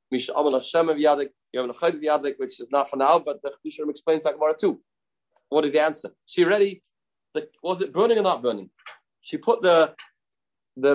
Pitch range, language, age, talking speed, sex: 140-230 Hz, English, 30-49, 165 wpm, male